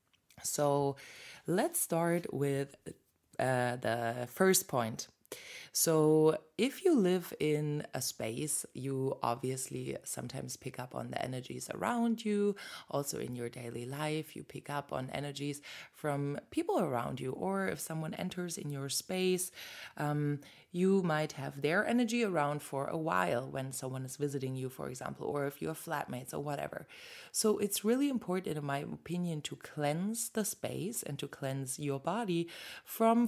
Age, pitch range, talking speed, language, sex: 20-39, 130-175 Hz, 155 wpm, English, female